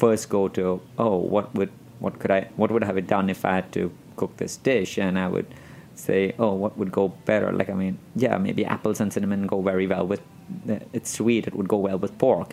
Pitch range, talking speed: 95-110 Hz, 240 wpm